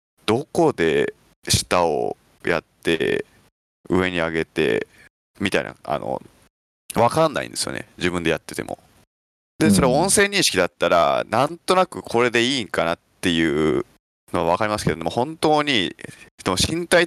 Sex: male